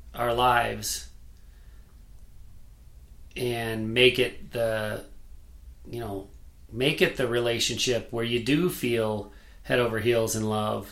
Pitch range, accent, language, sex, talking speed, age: 95-125 Hz, American, English, male, 115 wpm, 40-59